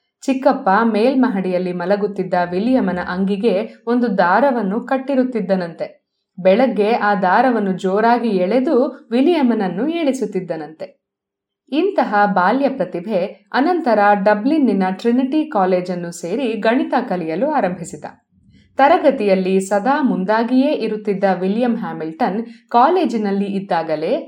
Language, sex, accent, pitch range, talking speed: Kannada, female, native, 190-265 Hz, 85 wpm